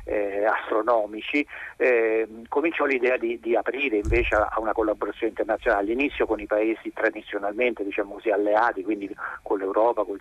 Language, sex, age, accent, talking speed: Italian, male, 50-69, native, 155 wpm